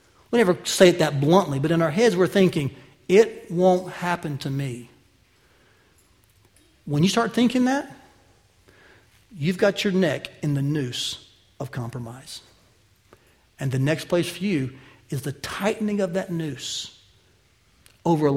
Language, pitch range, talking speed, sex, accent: English, 125-200 Hz, 145 wpm, male, American